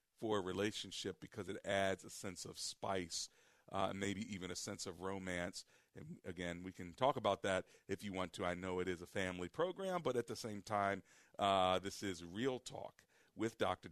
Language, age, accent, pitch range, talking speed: English, 40-59, American, 90-115 Hz, 205 wpm